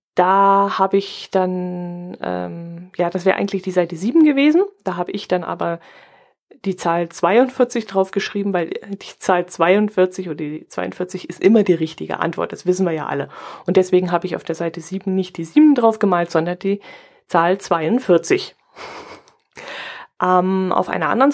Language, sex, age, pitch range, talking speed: German, female, 30-49, 180-225 Hz, 170 wpm